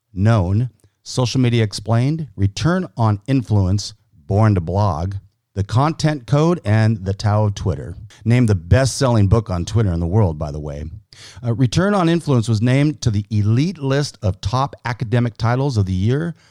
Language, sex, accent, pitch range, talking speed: English, male, American, 100-125 Hz, 170 wpm